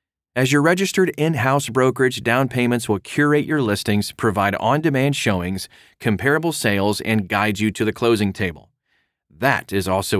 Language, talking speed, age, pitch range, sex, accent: English, 145 wpm, 30-49, 105-145 Hz, male, American